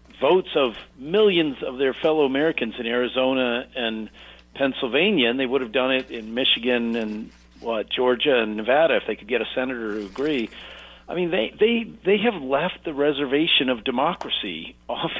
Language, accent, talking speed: English, American, 170 wpm